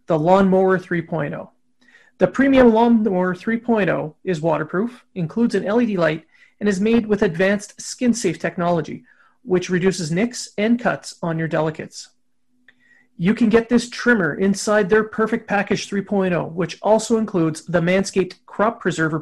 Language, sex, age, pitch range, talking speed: English, male, 30-49, 180-230 Hz, 145 wpm